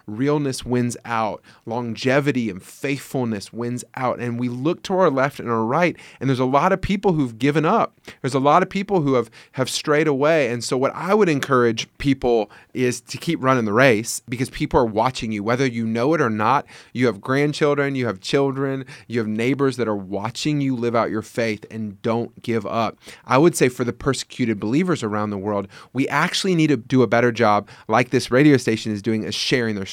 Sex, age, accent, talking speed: male, 30-49, American, 215 wpm